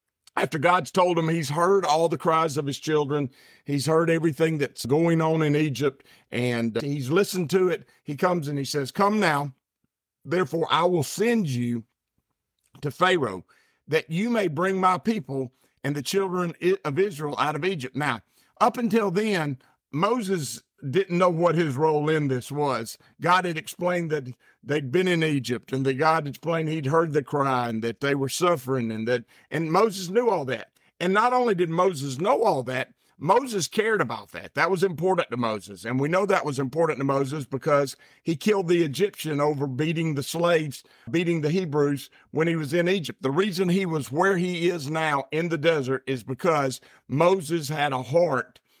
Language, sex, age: English, male, 50-69